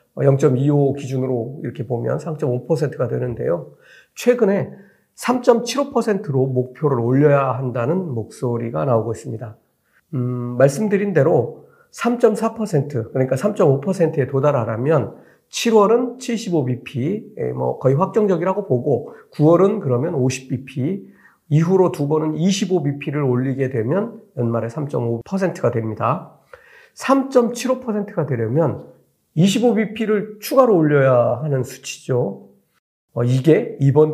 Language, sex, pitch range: Korean, male, 125-190 Hz